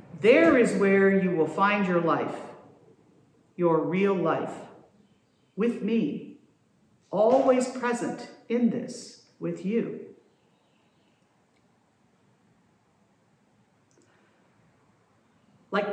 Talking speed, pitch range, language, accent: 75 wpm, 210-320 Hz, English, American